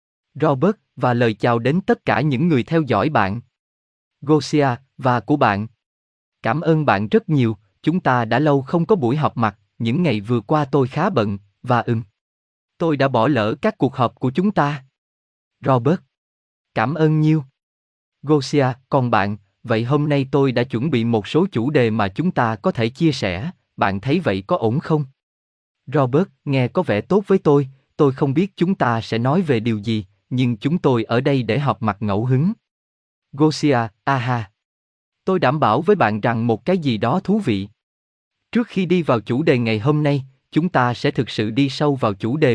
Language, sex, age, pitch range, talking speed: Vietnamese, male, 20-39, 110-155 Hz, 195 wpm